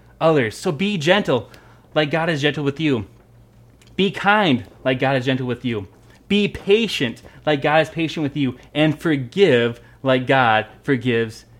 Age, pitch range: 20-39, 120-160 Hz